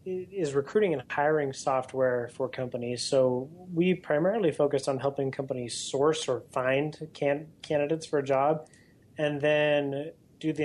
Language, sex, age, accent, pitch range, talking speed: English, male, 30-49, American, 130-150 Hz, 140 wpm